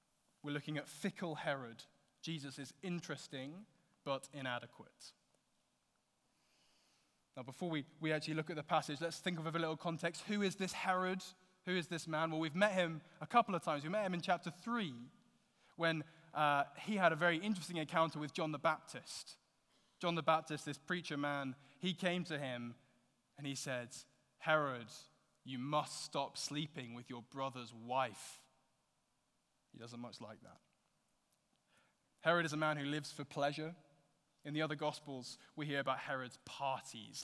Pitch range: 130-165 Hz